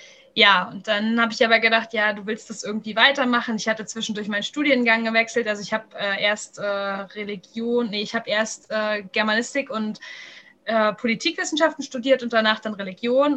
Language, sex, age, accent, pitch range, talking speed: German, female, 20-39, German, 220-255 Hz, 180 wpm